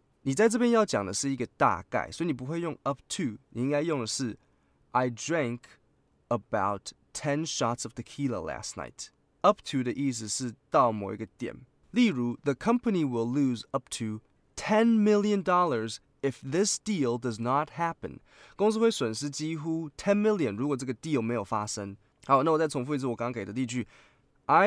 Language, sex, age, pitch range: Chinese, male, 20-39, 115-160 Hz